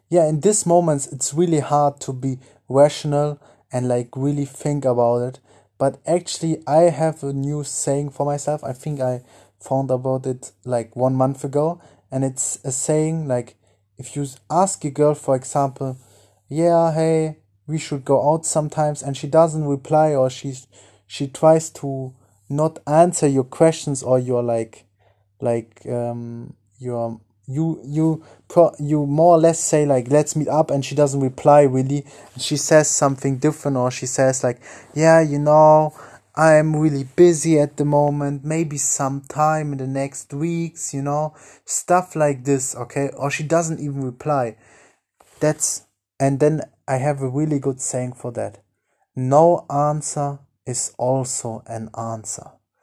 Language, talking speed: English, 160 wpm